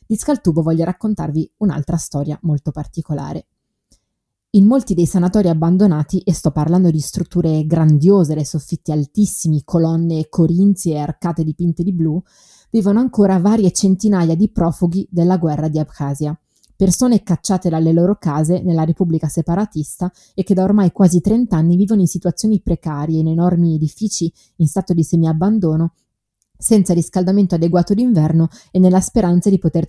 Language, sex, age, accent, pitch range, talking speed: Italian, female, 20-39, native, 160-185 Hz, 150 wpm